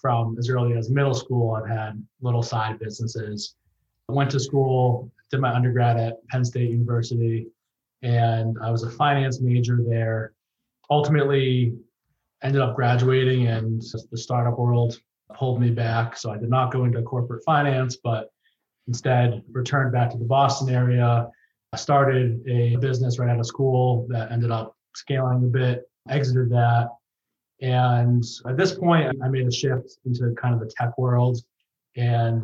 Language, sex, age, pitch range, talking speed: English, male, 20-39, 115-130 Hz, 165 wpm